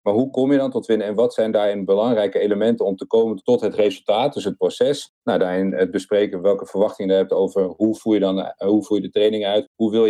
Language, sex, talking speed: Dutch, male, 255 wpm